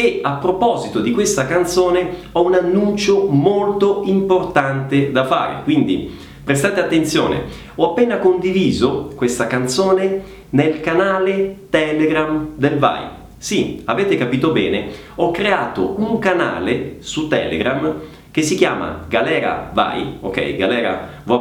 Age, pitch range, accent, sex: 30-49, 140-185 Hz, native, male